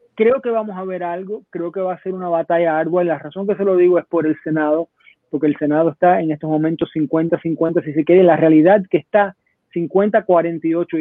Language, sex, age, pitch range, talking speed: Spanish, male, 30-49, 155-185 Hz, 225 wpm